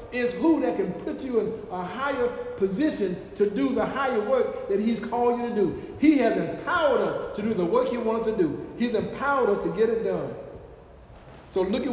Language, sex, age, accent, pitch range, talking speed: English, male, 50-69, American, 175-255 Hz, 215 wpm